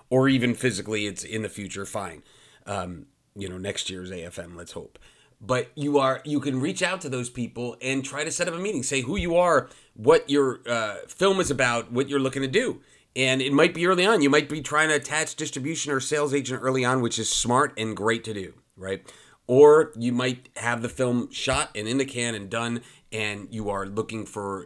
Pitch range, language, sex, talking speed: 110-145 Hz, English, male, 225 wpm